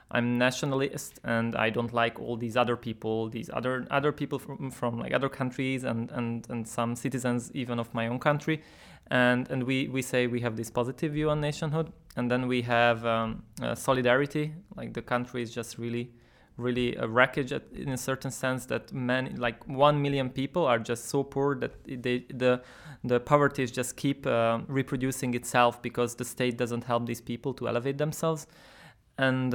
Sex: male